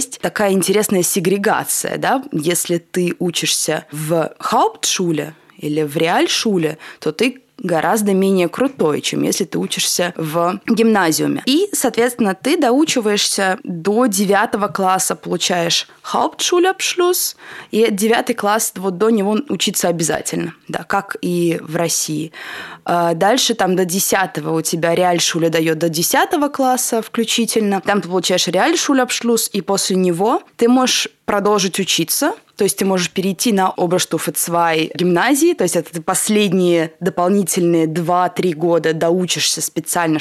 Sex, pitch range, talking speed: female, 170-230 Hz, 130 wpm